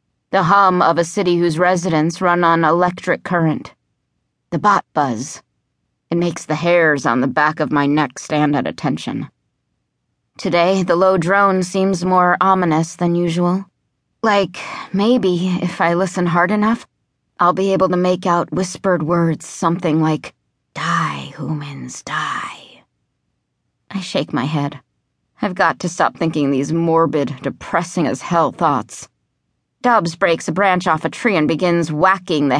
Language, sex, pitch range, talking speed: English, female, 160-195 Hz, 145 wpm